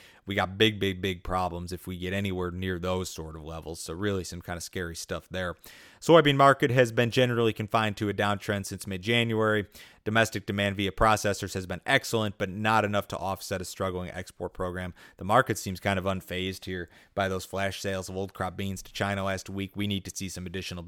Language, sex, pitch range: English, male, 95-105 Hz